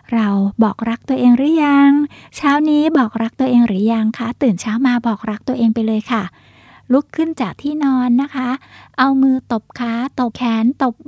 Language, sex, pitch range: Thai, female, 225-265 Hz